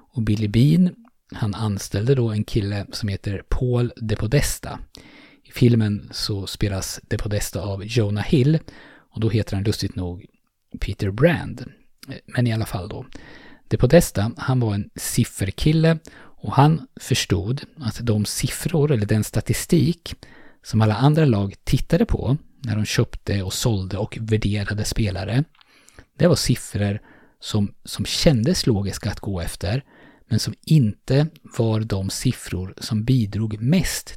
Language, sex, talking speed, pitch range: Swedish, male, 145 wpm, 105-130 Hz